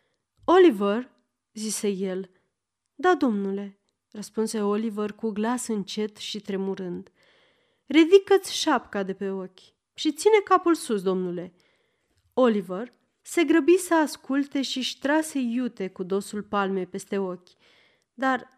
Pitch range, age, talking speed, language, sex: 195-275 Hz, 30-49, 115 wpm, Romanian, female